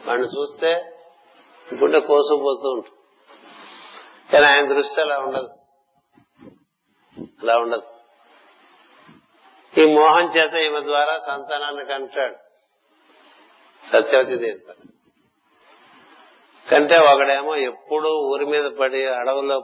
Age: 50-69